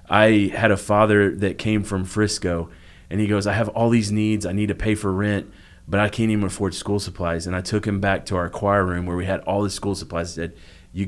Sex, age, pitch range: male, 30-49, 90-105 Hz